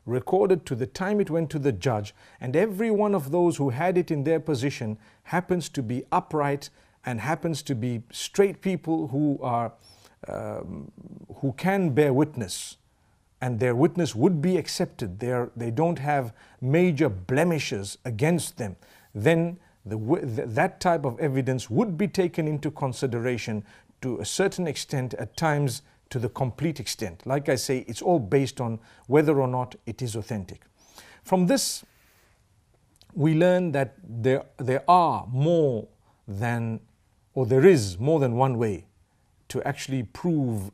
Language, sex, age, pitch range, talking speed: English, male, 50-69, 110-155 Hz, 155 wpm